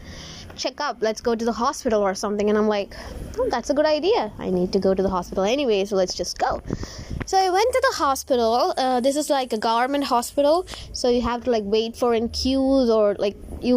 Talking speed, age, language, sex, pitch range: 230 wpm, 20-39, English, female, 210-270 Hz